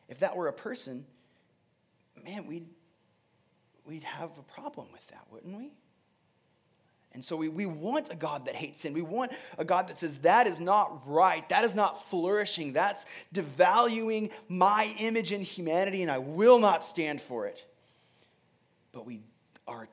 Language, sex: English, male